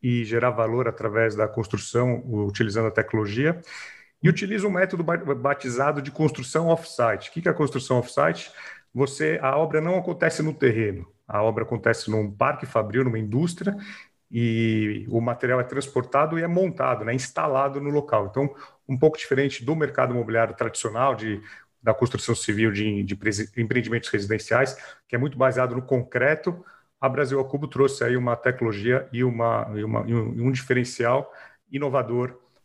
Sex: male